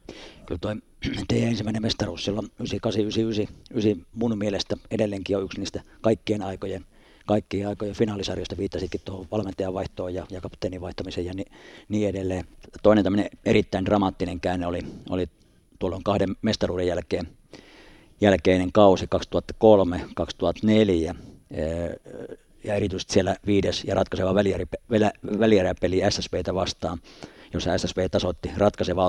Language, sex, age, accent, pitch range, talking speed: Finnish, male, 50-69, native, 90-105 Hz, 120 wpm